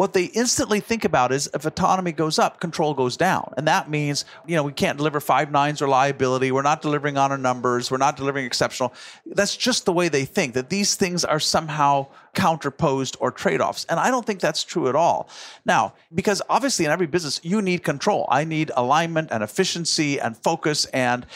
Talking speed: 210 wpm